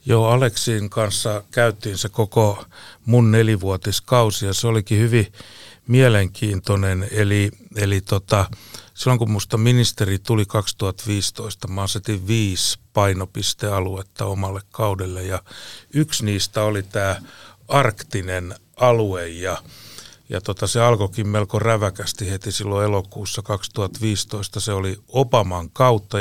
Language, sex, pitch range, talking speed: Finnish, male, 100-115 Hz, 115 wpm